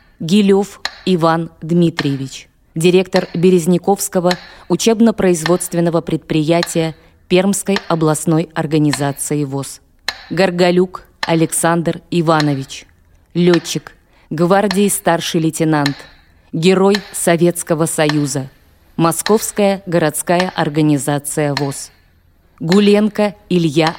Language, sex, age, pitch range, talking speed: Russian, female, 20-39, 155-185 Hz, 70 wpm